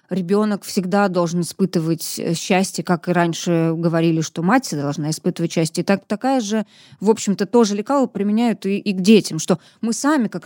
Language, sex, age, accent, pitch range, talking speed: Russian, female, 20-39, native, 170-200 Hz, 180 wpm